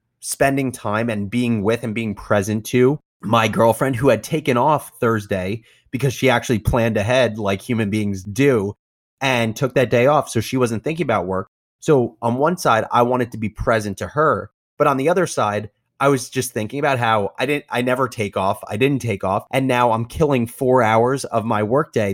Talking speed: 210 wpm